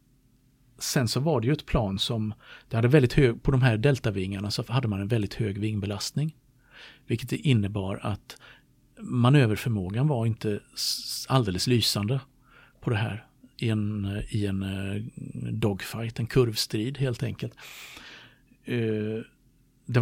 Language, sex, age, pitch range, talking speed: Swedish, male, 50-69, 105-130 Hz, 130 wpm